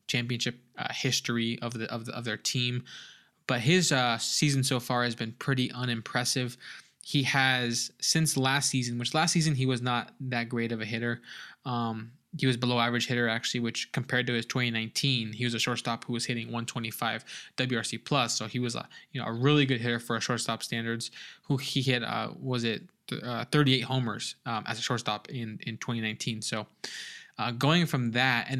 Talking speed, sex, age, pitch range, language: 195 wpm, male, 20-39, 115-130 Hz, English